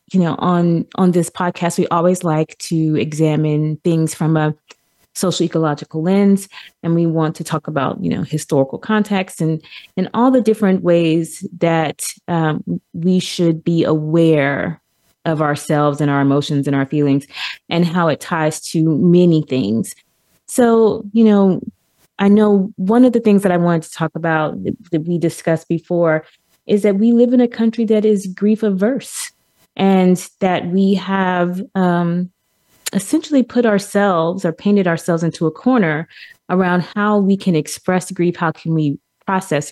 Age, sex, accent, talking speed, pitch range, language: 20-39, female, American, 160 wpm, 160-195 Hz, English